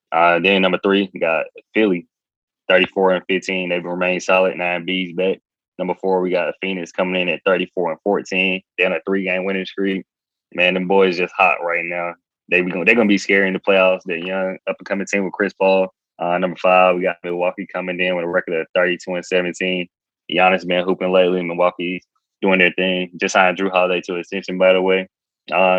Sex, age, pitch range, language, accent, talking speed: male, 20-39, 90-95 Hz, English, American, 230 wpm